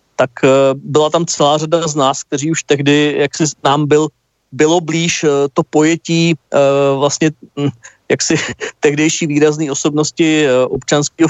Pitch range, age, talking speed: 130-155 Hz, 40-59, 135 wpm